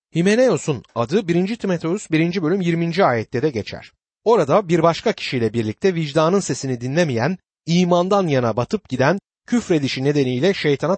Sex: male